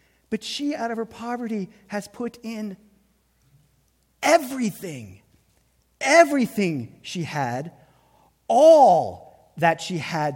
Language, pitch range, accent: English, 125-205 Hz, American